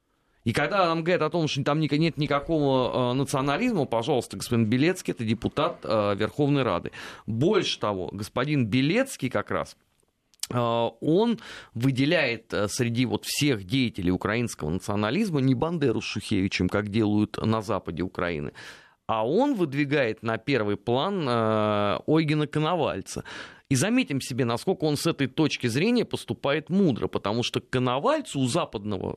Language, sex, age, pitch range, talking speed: Russian, male, 30-49, 110-150 Hz, 135 wpm